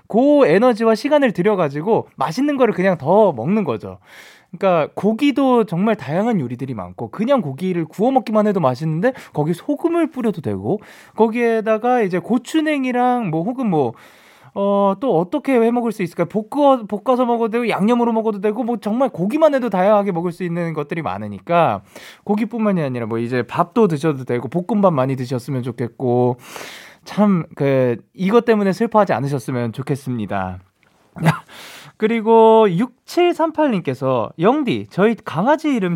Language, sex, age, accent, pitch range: Korean, male, 20-39, native, 145-235 Hz